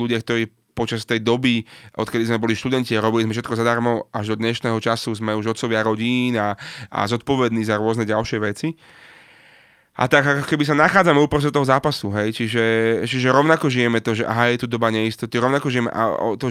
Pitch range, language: 115-135 Hz, Slovak